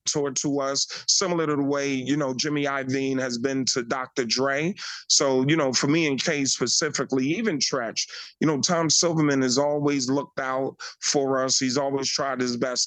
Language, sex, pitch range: English, male, 130-150 Hz